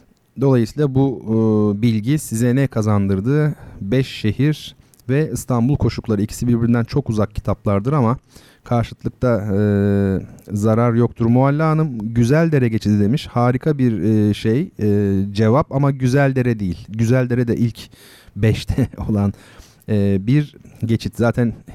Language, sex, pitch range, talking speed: Turkish, male, 105-140 Hz, 125 wpm